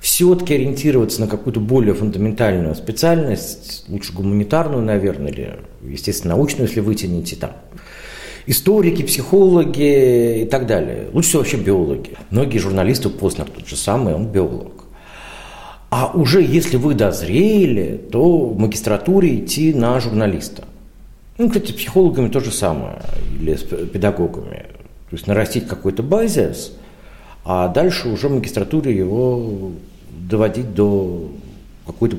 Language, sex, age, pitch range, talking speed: Russian, male, 50-69, 105-160 Hz, 130 wpm